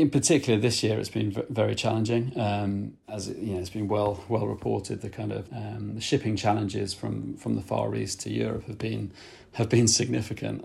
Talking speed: 215 wpm